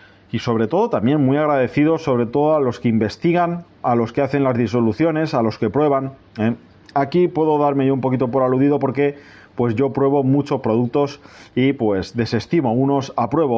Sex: male